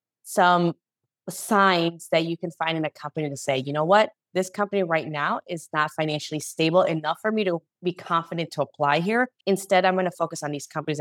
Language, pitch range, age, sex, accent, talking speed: English, 150-185 Hz, 30-49, female, American, 215 wpm